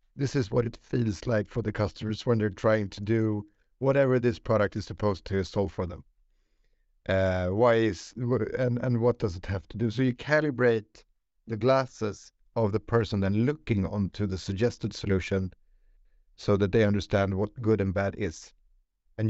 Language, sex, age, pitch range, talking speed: English, male, 50-69, 95-115 Hz, 180 wpm